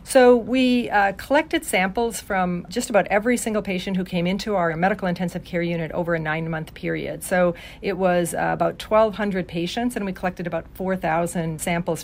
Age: 50-69